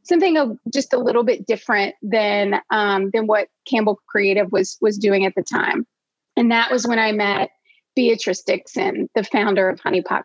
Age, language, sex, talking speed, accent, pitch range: 30-49, English, female, 180 wpm, American, 210-250 Hz